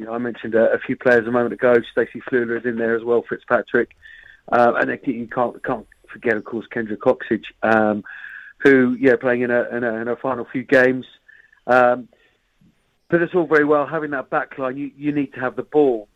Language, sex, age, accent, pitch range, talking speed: English, male, 40-59, British, 120-145 Hz, 210 wpm